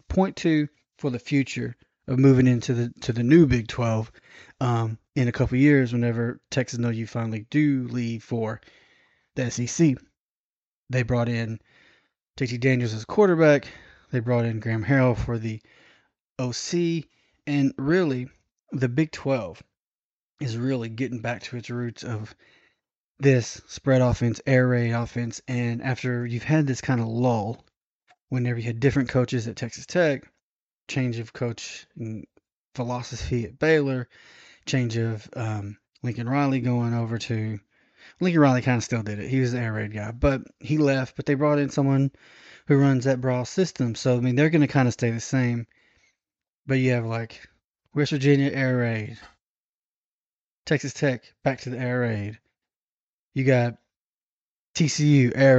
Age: 20-39